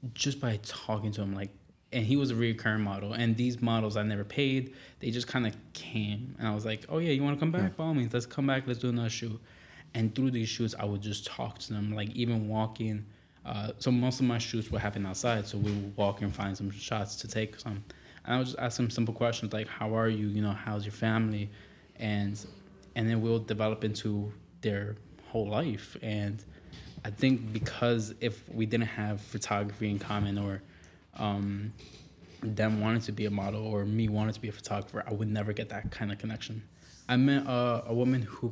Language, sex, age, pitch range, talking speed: English, male, 20-39, 105-120 Hz, 220 wpm